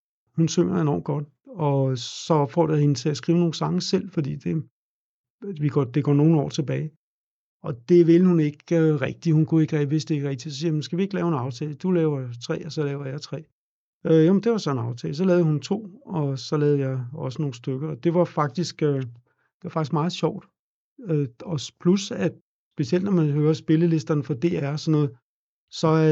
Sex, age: male, 60-79